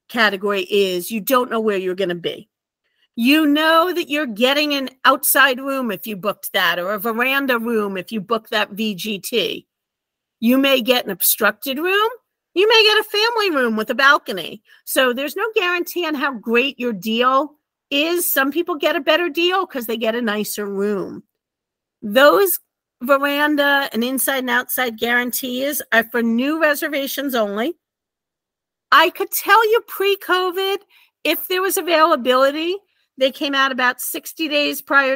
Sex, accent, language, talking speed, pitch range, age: female, American, English, 165 wpm, 240-345 Hz, 50-69